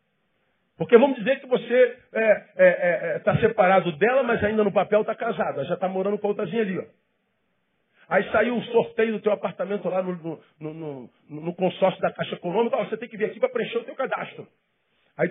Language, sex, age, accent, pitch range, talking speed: English, male, 40-59, Brazilian, 185-255 Hz, 210 wpm